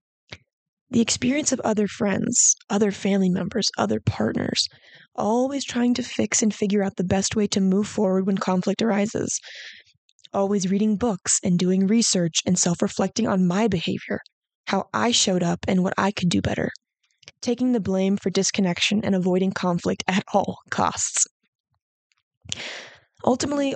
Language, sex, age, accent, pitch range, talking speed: English, female, 20-39, American, 190-225 Hz, 150 wpm